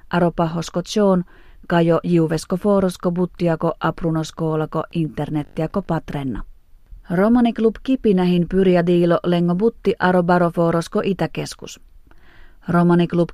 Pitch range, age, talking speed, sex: 170-195 Hz, 30-49, 90 wpm, female